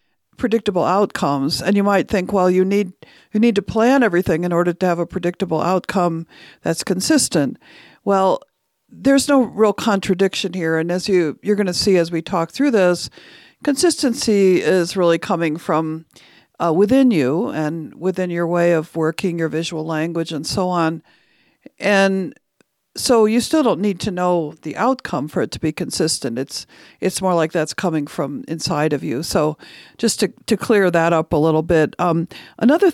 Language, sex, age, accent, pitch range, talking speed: English, female, 50-69, American, 170-225 Hz, 180 wpm